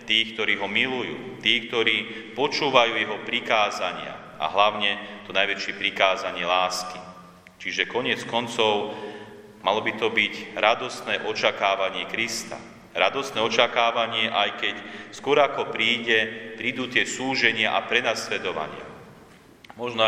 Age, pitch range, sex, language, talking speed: 40-59, 95-115 Hz, male, Slovak, 115 wpm